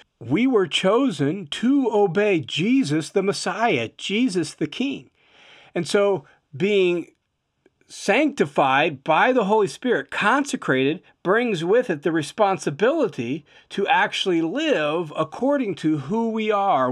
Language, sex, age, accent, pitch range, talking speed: English, male, 40-59, American, 145-200 Hz, 115 wpm